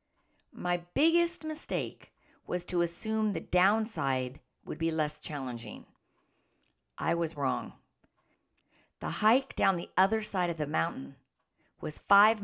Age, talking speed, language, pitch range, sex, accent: 40-59, 125 wpm, English, 155-195 Hz, female, American